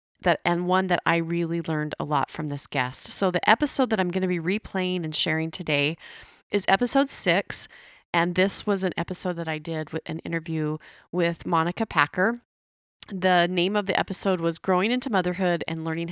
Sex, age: female, 30-49